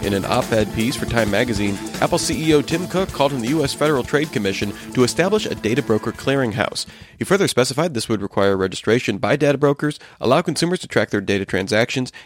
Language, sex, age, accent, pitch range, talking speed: English, male, 30-49, American, 110-150 Hz, 200 wpm